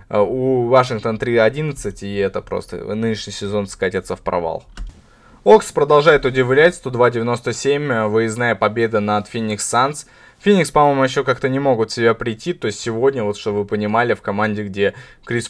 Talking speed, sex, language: 155 wpm, male, Russian